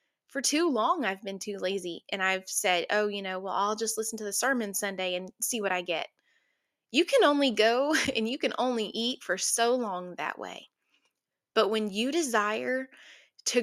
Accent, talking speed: American, 200 wpm